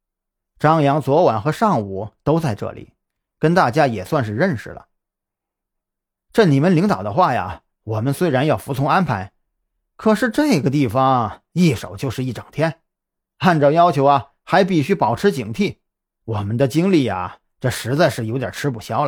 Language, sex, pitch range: Chinese, male, 110-165 Hz